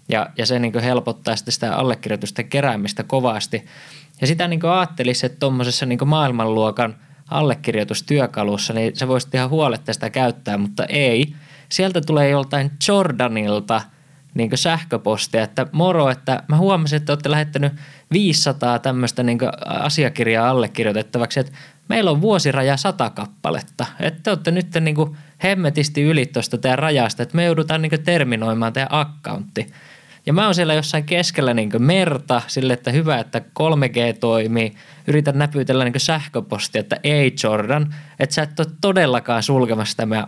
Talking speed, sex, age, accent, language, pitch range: 145 wpm, male, 20-39, native, Finnish, 120-155 Hz